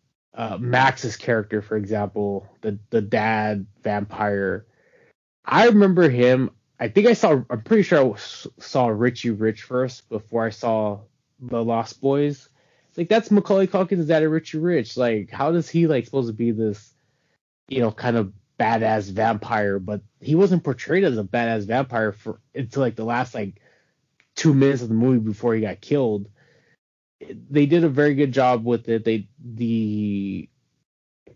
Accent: American